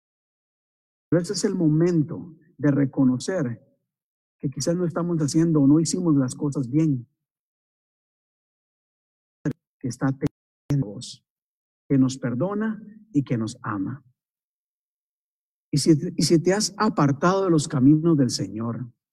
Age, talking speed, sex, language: 50-69, 130 wpm, male, Spanish